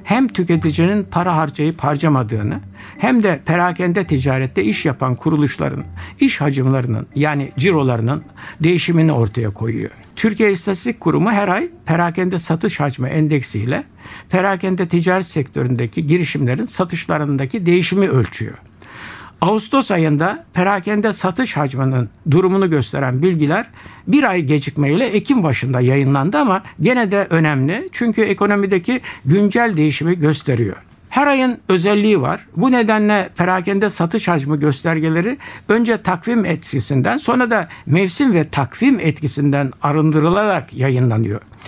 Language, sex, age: Turkish, male, 60-79